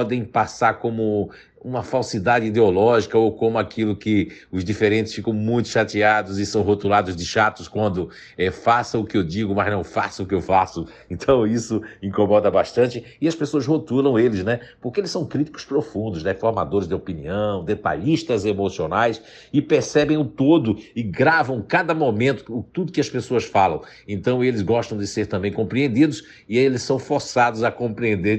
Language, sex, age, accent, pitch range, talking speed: Portuguese, male, 60-79, Brazilian, 100-120 Hz, 170 wpm